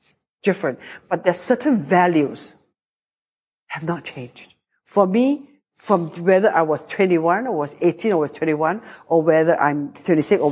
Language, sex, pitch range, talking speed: English, female, 150-185 Hz, 150 wpm